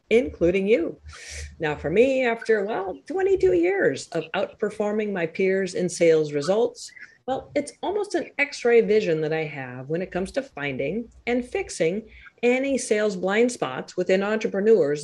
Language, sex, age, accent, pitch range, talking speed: English, female, 40-59, American, 175-290 Hz, 150 wpm